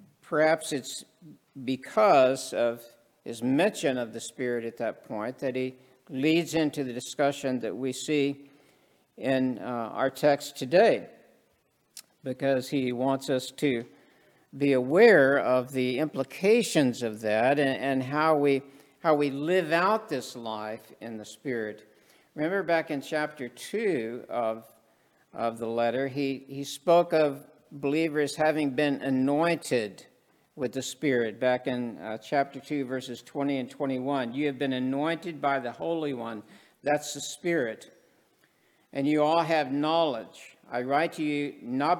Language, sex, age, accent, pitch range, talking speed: English, male, 60-79, American, 125-150 Hz, 145 wpm